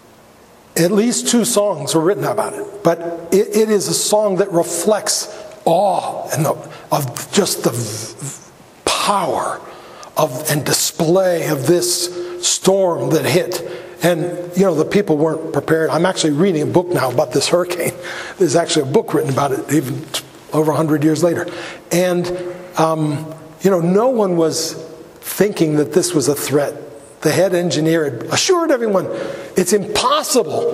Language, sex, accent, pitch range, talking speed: English, male, American, 155-190 Hz, 155 wpm